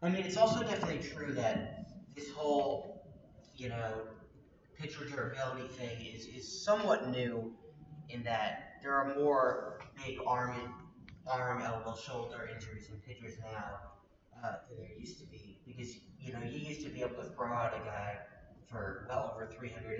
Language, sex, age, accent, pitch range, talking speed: English, male, 30-49, American, 115-145 Hz, 170 wpm